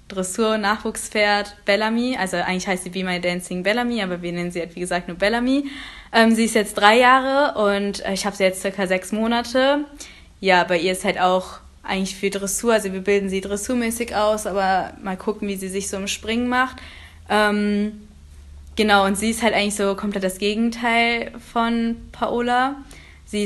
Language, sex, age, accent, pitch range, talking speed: German, female, 20-39, German, 190-225 Hz, 185 wpm